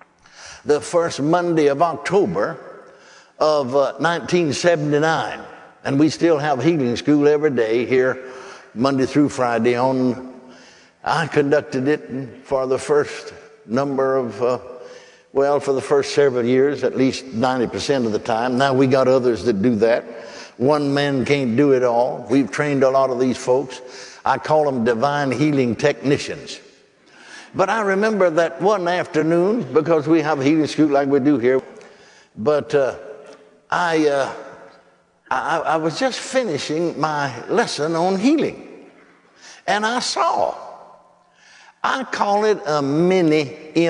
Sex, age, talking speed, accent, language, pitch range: male, 60-79, 140 wpm, American, English, 130-160 Hz